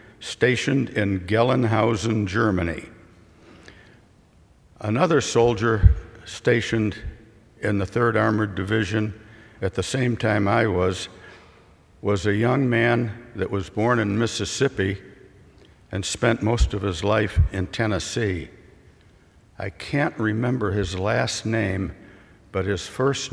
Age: 60-79